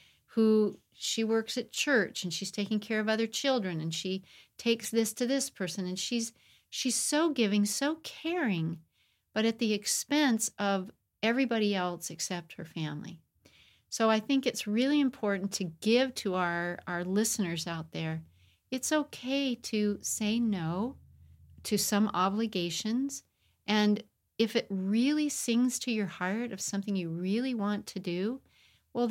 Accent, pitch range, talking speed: American, 180-230 Hz, 155 wpm